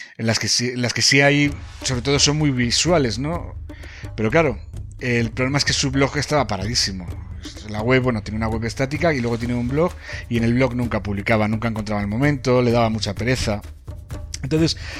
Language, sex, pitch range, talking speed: Spanish, male, 105-130 Hz, 210 wpm